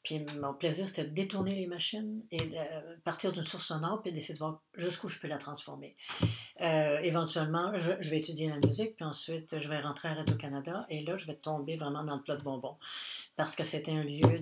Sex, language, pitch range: female, French, 150-180 Hz